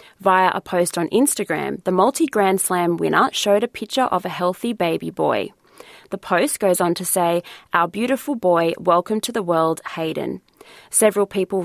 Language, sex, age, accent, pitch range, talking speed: English, female, 20-39, Australian, 175-210 Hz, 175 wpm